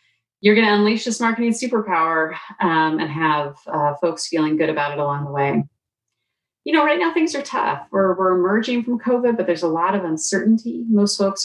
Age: 30-49